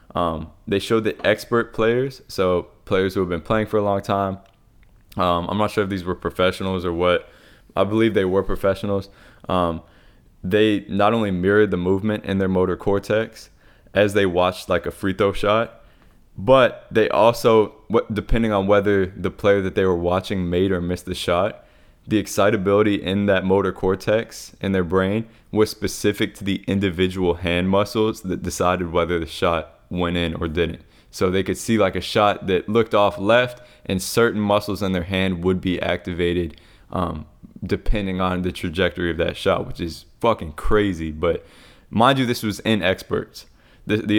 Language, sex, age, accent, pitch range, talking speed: English, male, 20-39, American, 90-105 Hz, 180 wpm